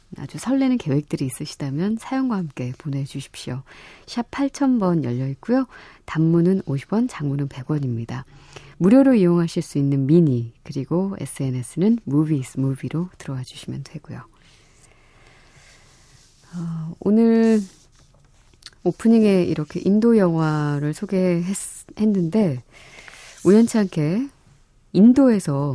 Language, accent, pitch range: Korean, native, 135-190 Hz